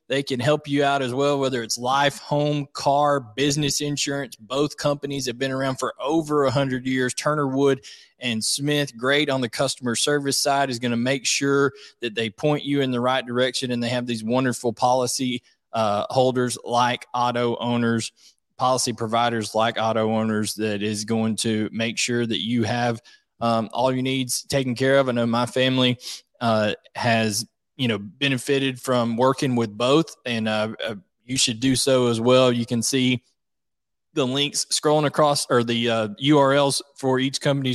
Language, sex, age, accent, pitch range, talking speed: English, male, 20-39, American, 120-140 Hz, 180 wpm